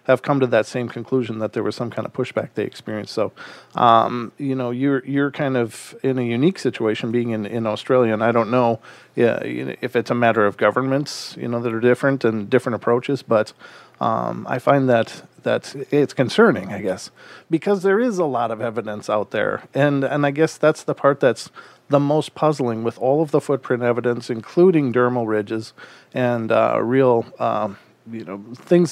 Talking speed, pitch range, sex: 200 wpm, 120-145 Hz, male